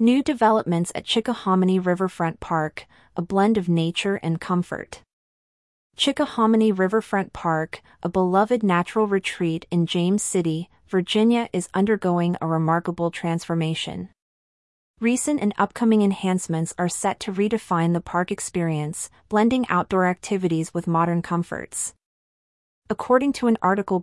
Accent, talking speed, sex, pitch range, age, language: American, 120 wpm, female, 170-215 Hz, 30-49, English